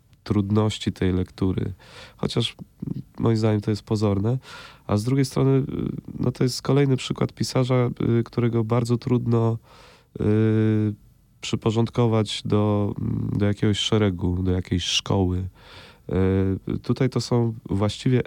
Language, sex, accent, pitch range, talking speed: Polish, male, native, 95-115 Hz, 110 wpm